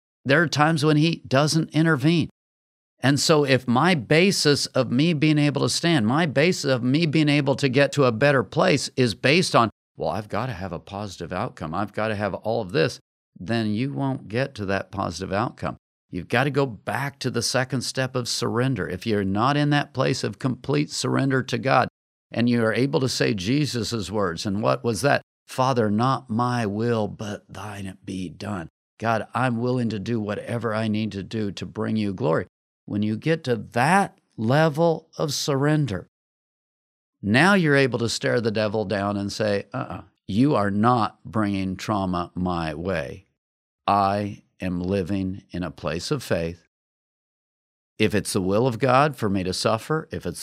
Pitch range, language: 100-140 Hz, English